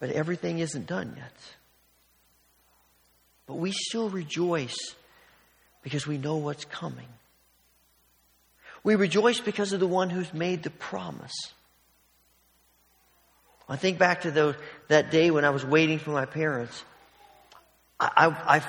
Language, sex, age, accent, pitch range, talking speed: English, male, 50-69, American, 120-170 Hz, 130 wpm